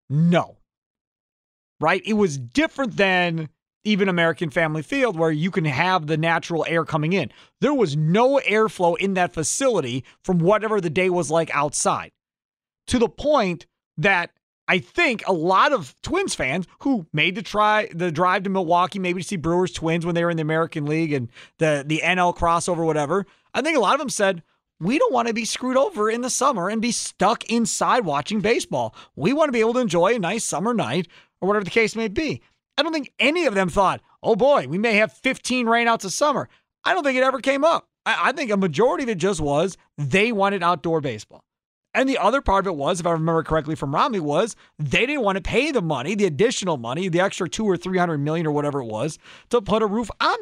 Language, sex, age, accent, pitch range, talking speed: English, male, 30-49, American, 165-230 Hz, 220 wpm